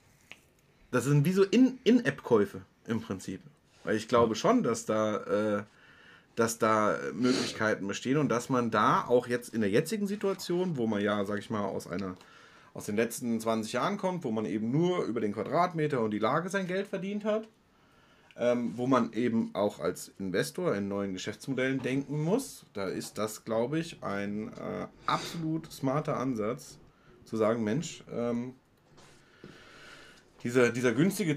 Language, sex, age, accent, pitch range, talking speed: German, male, 30-49, German, 115-170 Hz, 155 wpm